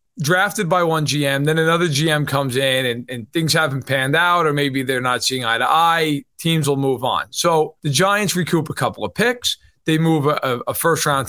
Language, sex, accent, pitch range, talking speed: English, male, American, 140-175 Hz, 205 wpm